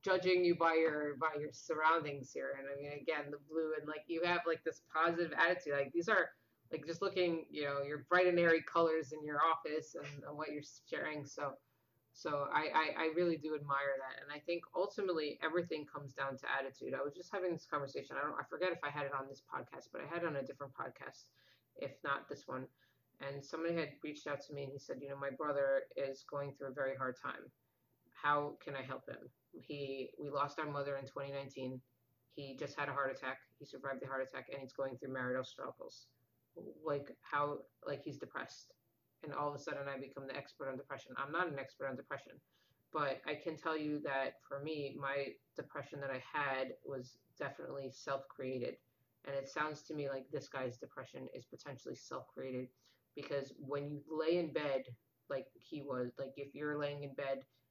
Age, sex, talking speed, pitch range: 30-49, female, 215 wpm, 135-155 Hz